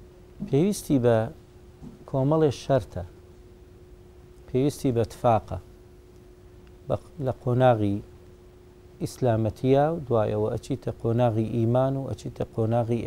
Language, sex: English, male